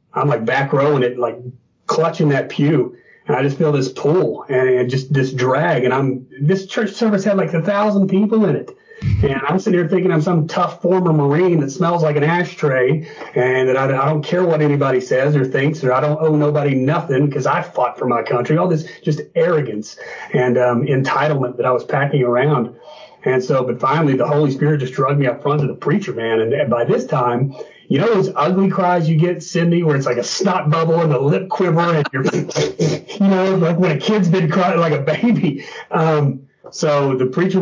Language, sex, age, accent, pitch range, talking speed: English, male, 40-59, American, 140-185 Hz, 220 wpm